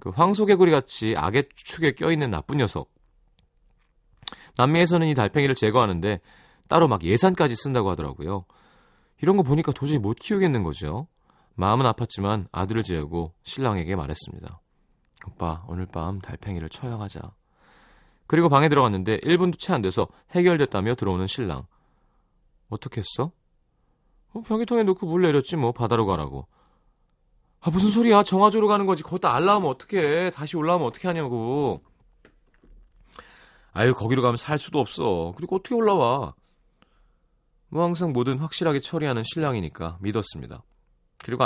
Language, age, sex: Korean, 30-49, male